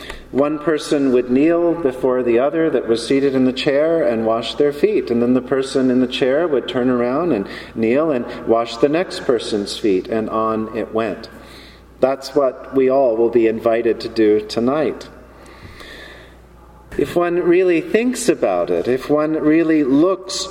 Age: 40-59